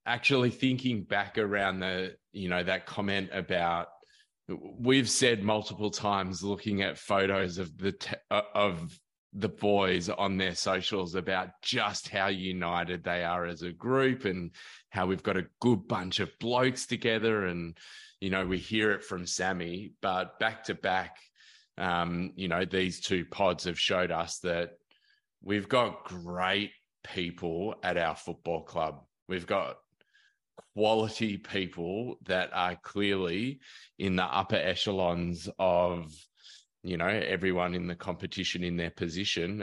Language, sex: English, male